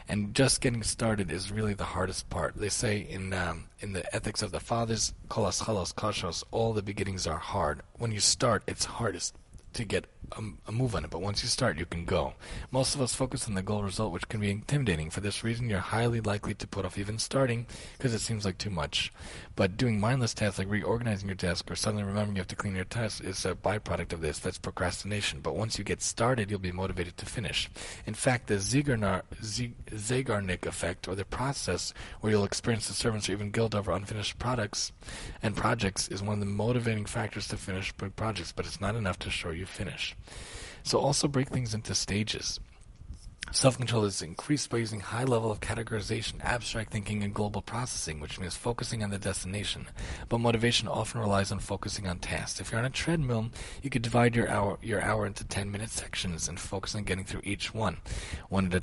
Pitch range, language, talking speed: 95-115 Hz, English, 205 wpm